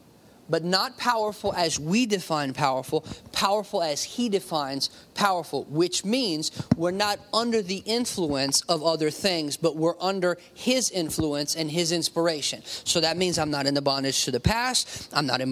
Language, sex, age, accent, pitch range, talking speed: English, male, 30-49, American, 155-210 Hz, 170 wpm